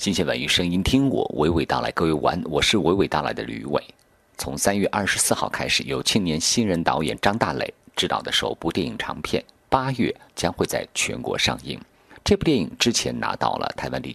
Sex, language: male, Chinese